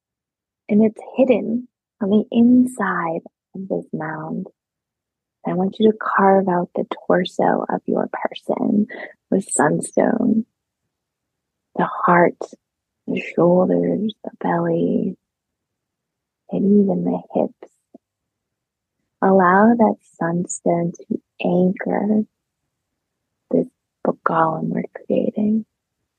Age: 20-39